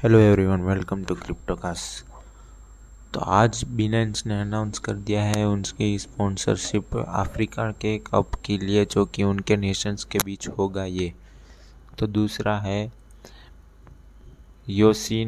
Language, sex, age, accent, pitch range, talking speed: Hindi, male, 20-39, native, 100-105 Hz, 125 wpm